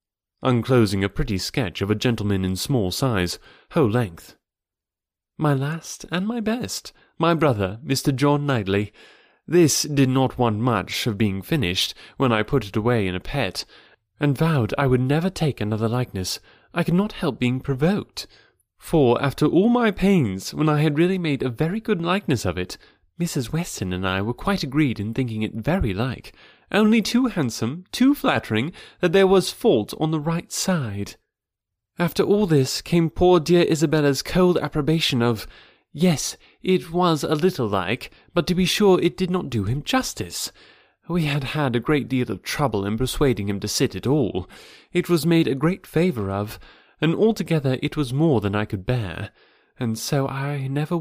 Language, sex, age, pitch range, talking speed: English, male, 30-49, 110-170 Hz, 180 wpm